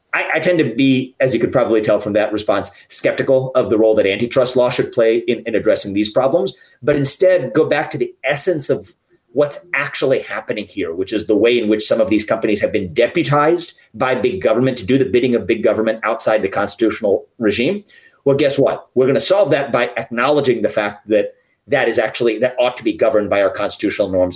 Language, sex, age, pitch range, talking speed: English, male, 30-49, 115-175 Hz, 220 wpm